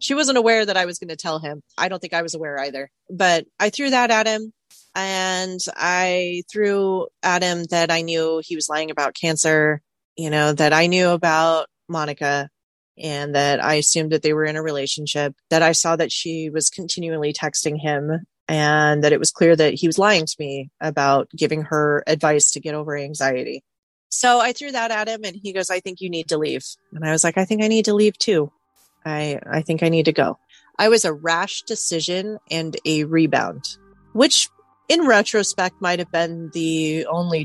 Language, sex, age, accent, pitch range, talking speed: English, female, 30-49, American, 150-185 Hz, 205 wpm